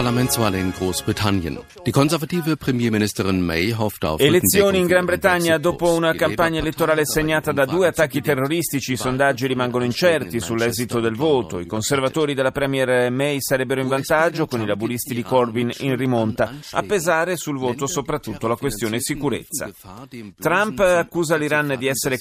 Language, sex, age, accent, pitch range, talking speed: Italian, male, 40-59, native, 110-145 Hz, 130 wpm